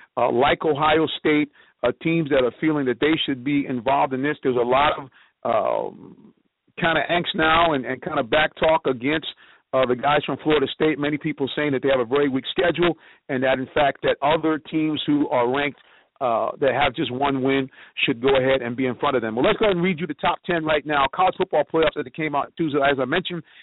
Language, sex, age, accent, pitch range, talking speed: English, male, 50-69, American, 140-165 Hz, 240 wpm